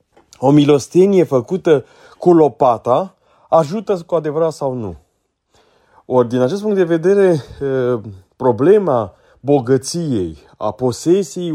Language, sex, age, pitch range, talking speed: Romanian, male, 30-49, 120-155 Hz, 105 wpm